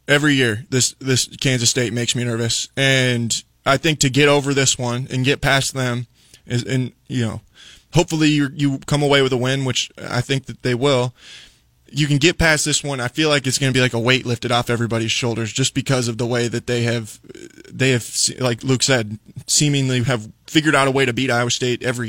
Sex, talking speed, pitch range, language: male, 225 wpm, 120-135 Hz, English